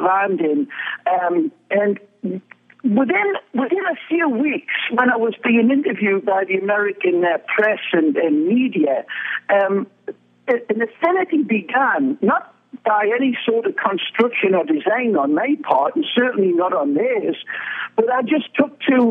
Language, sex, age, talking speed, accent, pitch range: English, male, 60-79, 150 wpm, British, 200-295 Hz